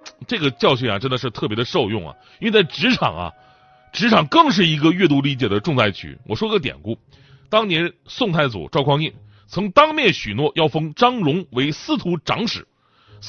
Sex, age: male, 30-49